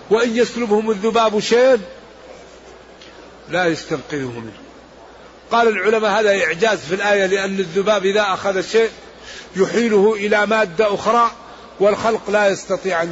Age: 50-69